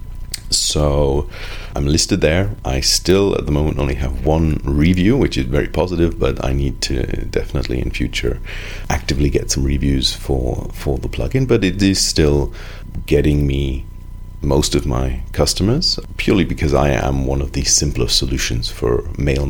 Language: English